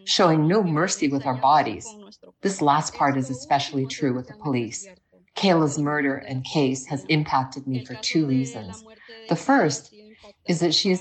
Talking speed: 170 wpm